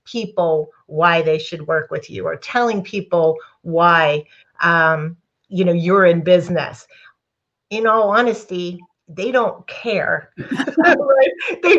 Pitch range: 200-260 Hz